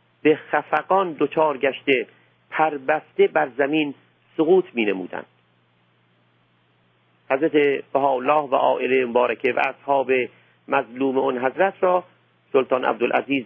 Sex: male